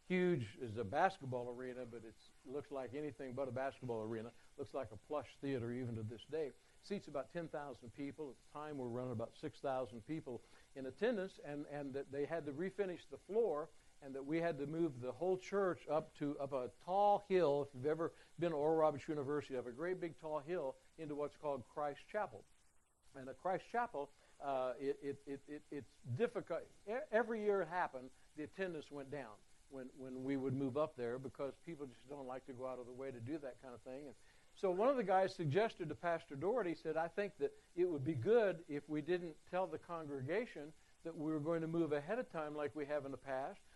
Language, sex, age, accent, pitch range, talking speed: English, male, 60-79, American, 135-170 Hz, 225 wpm